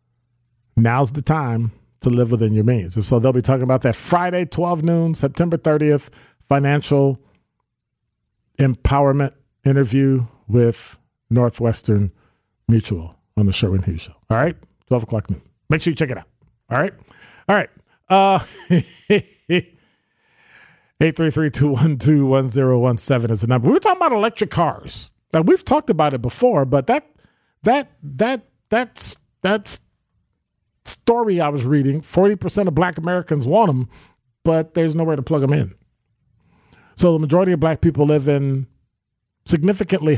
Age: 40-59